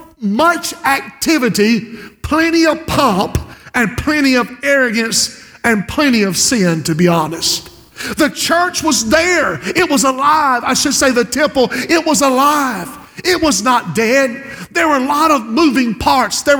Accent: American